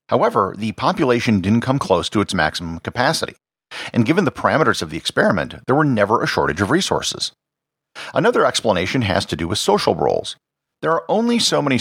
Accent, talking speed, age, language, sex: American, 190 wpm, 50-69, English, male